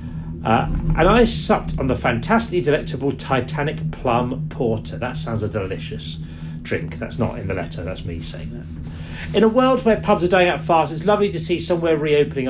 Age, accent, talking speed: 40-59, British, 190 wpm